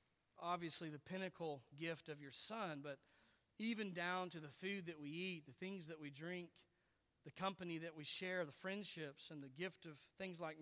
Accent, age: American, 40-59